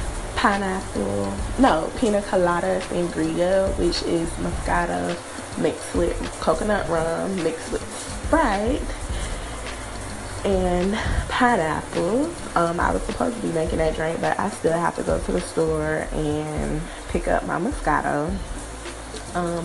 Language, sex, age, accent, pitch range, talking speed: English, female, 20-39, American, 120-175 Hz, 125 wpm